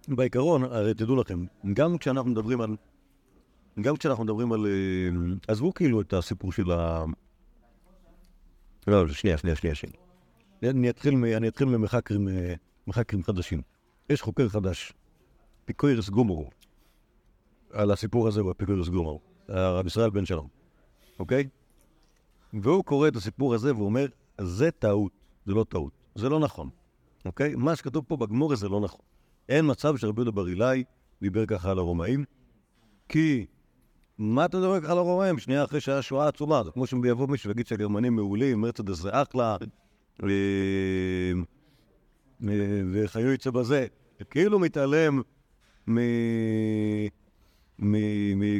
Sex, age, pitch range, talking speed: male, 50-69, 100-135 Hz, 135 wpm